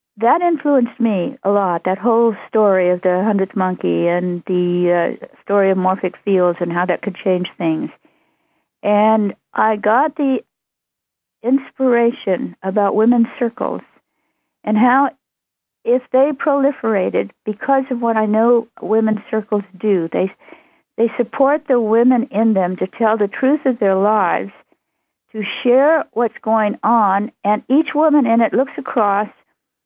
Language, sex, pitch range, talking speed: English, female, 205-255 Hz, 145 wpm